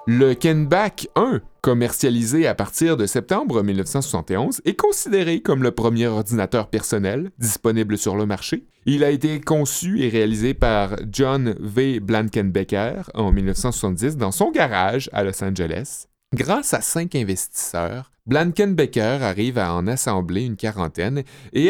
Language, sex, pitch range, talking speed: French, male, 105-150 Hz, 140 wpm